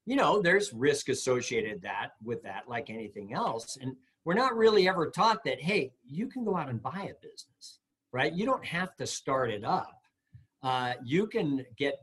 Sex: male